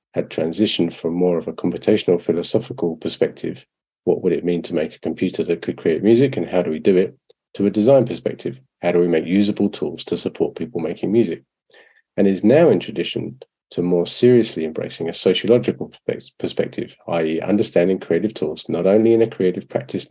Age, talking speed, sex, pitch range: 40-59, 190 wpm, male, 85-110 Hz